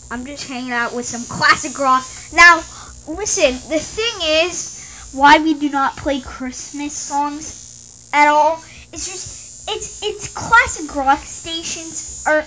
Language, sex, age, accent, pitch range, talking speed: English, female, 10-29, American, 245-315 Hz, 140 wpm